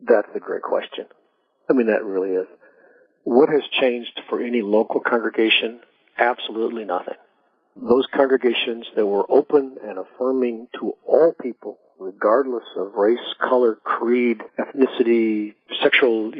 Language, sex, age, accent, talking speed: English, male, 50-69, American, 130 wpm